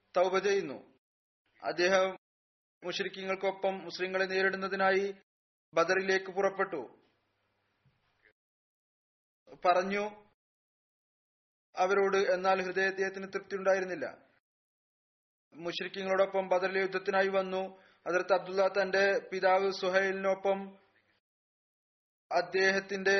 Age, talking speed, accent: 30-49, 60 wpm, native